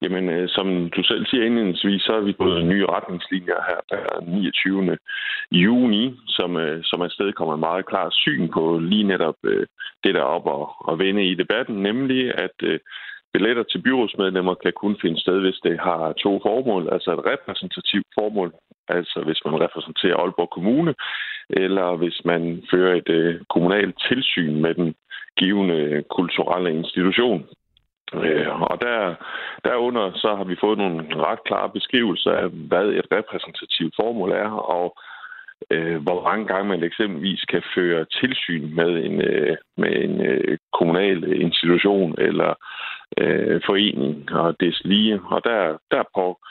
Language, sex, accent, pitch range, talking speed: Danish, male, native, 85-100 Hz, 150 wpm